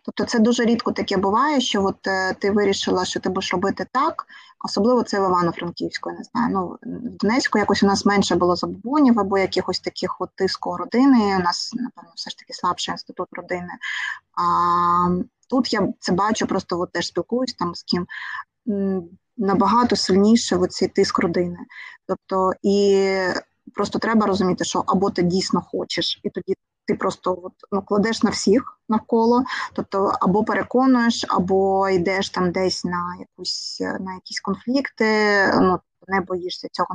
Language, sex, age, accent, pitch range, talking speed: Ukrainian, female, 20-39, native, 185-225 Hz, 160 wpm